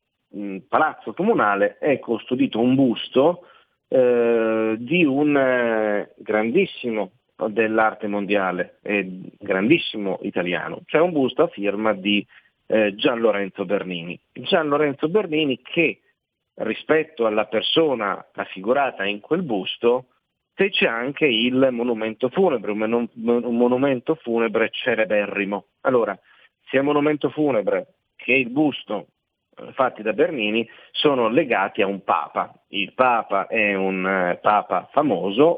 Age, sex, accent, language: 40-59, male, native, Italian